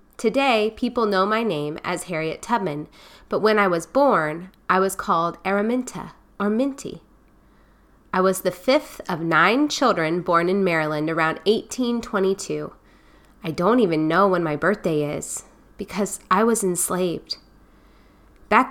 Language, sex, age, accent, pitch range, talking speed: English, female, 30-49, American, 175-225 Hz, 140 wpm